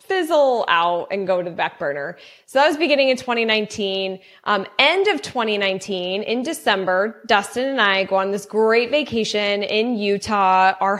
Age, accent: 20-39, American